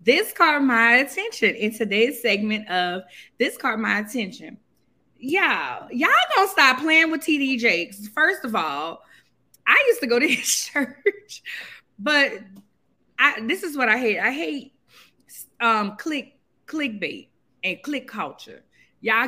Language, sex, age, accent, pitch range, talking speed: English, female, 20-39, American, 195-290 Hz, 145 wpm